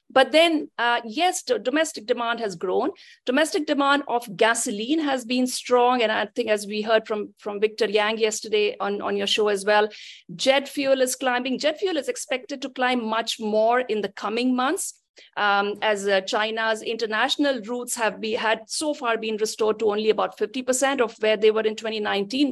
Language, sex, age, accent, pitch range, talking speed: English, female, 50-69, Indian, 215-270 Hz, 190 wpm